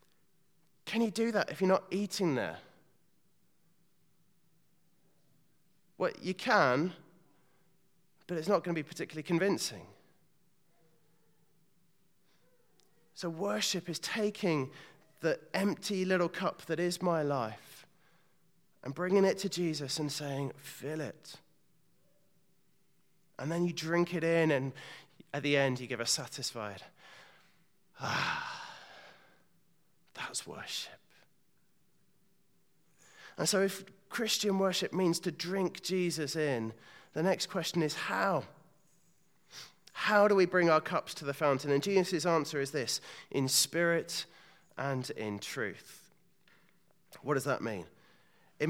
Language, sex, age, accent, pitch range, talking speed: English, male, 30-49, British, 150-185 Hz, 120 wpm